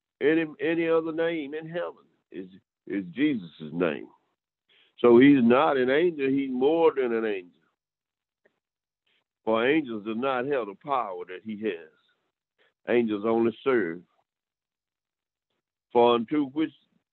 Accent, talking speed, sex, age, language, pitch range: American, 125 wpm, male, 60-79, English, 110-145 Hz